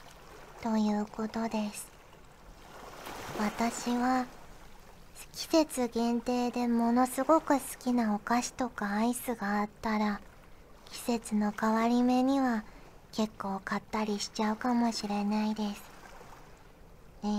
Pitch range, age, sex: 210-245 Hz, 40-59, male